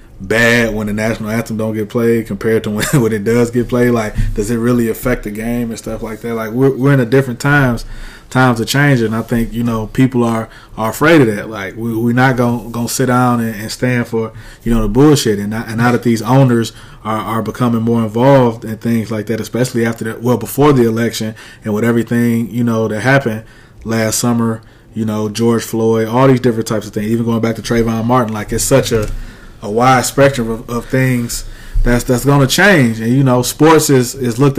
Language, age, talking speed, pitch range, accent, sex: English, 20-39, 230 wpm, 110-125 Hz, American, male